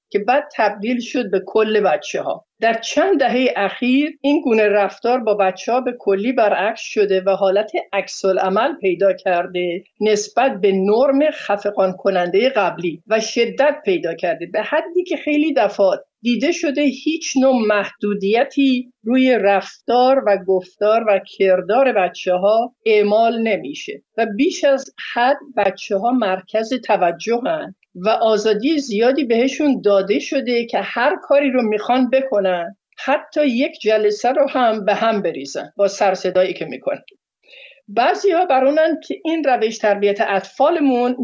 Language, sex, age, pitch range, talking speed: Persian, female, 50-69, 200-275 Hz, 145 wpm